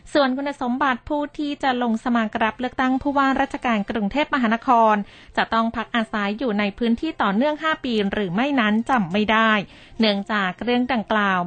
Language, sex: Thai, female